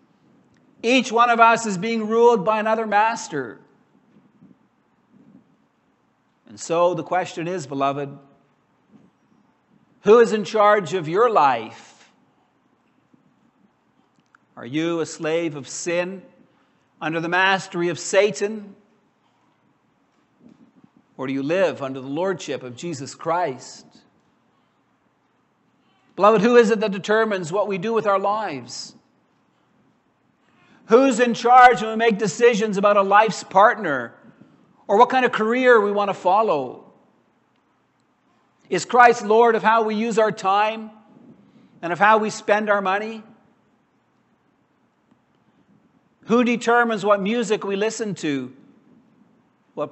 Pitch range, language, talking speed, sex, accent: 185-230 Hz, English, 120 wpm, male, American